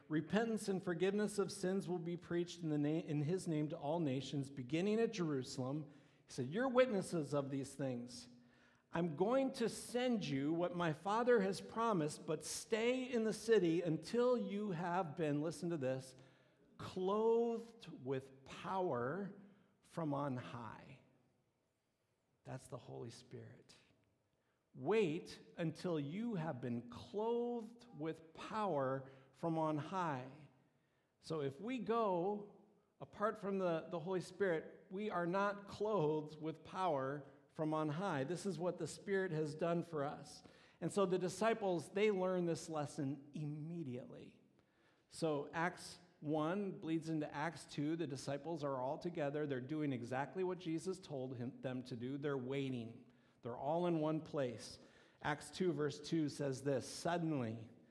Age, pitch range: 50-69, 140-190 Hz